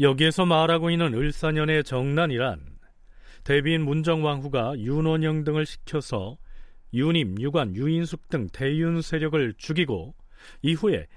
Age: 40-59